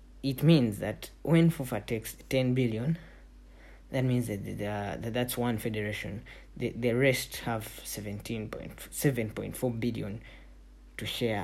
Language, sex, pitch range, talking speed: English, male, 105-130 Hz, 145 wpm